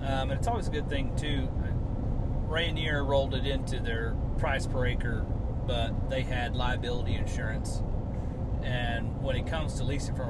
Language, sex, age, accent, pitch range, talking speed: English, male, 30-49, American, 105-130 Hz, 165 wpm